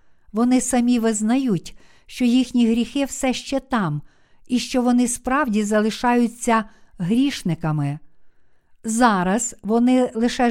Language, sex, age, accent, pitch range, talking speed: Ukrainian, female, 50-69, native, 205-250 Hz, 105 wpm